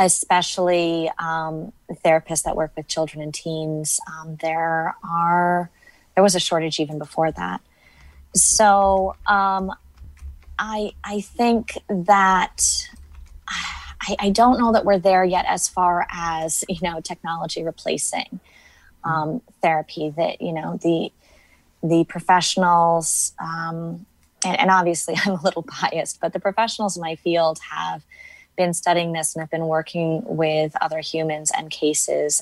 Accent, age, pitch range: American, 20-39, 155-195 Hz